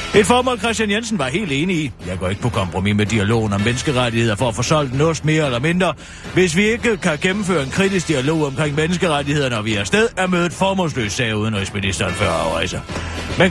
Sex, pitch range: male, 115-175 Hz